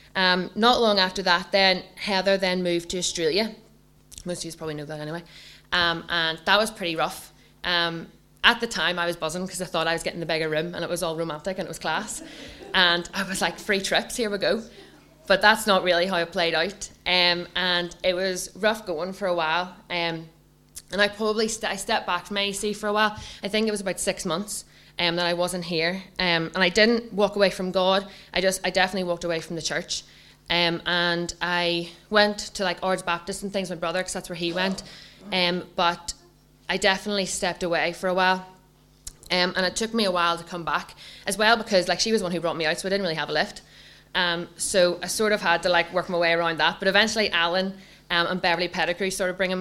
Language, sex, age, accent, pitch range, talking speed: English, female, 20-39, Irish, 170-195 Hz, 235 wpm